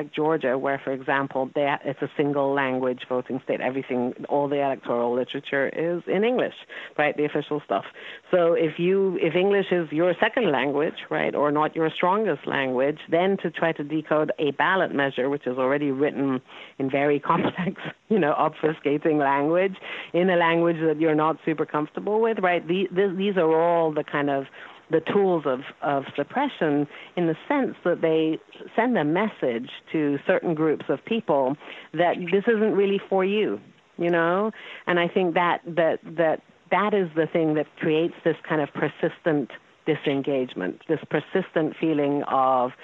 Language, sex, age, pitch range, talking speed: English, female, 50-69, 140-175 Hz, 165 wpm